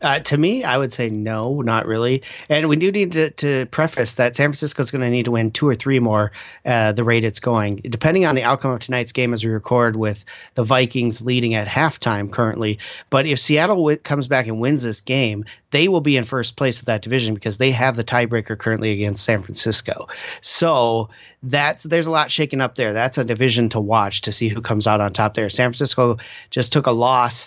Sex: male